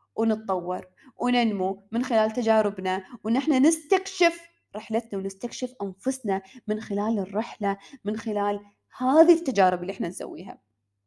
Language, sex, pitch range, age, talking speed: Arabic, female, 205-275 Hz, 20-39, 110 wpm